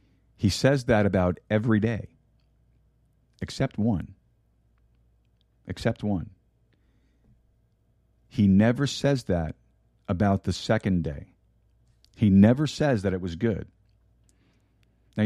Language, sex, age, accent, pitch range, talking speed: English, male, 50-69, American, 95-120 Hz, 100 wpm